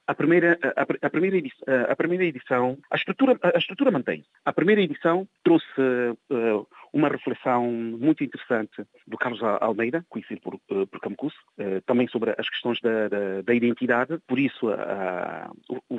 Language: Portuguese